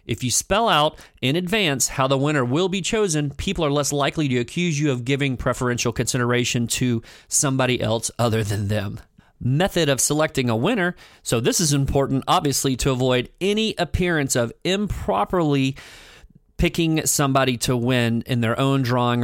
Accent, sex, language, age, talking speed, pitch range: American, male, English, 40-59, 165 wpm, 120-170 Hz